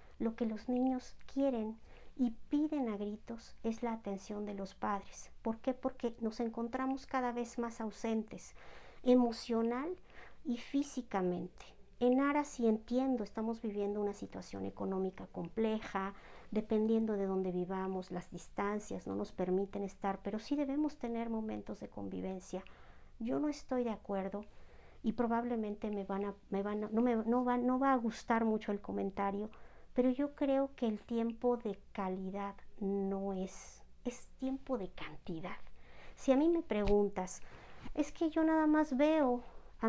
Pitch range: 200-255 Hz